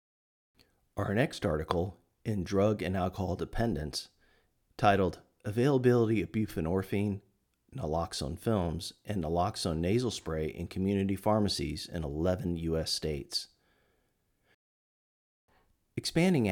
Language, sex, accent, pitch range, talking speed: English, male, American, 85-110 Hz, 95 wpm